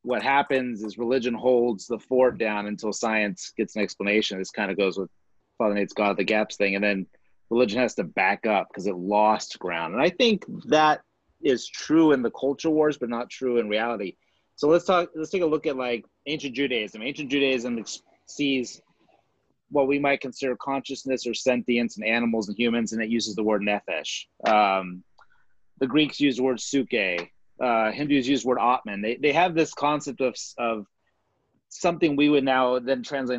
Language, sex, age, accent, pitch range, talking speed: English, male, 30-49, American, 115-140 Hz, 190 wpm